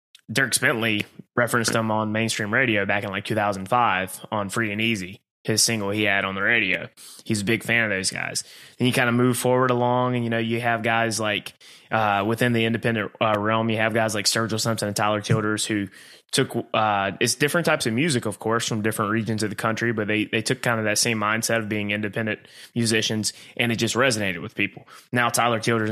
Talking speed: 220 wpm